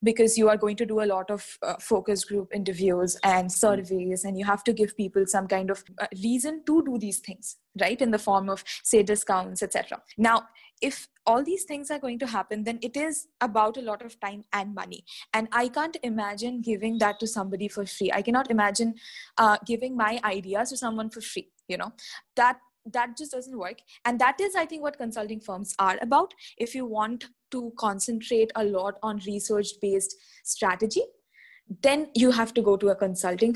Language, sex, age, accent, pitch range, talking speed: English, female, 20-39, Indian, 195-240 Hz, 200 wpm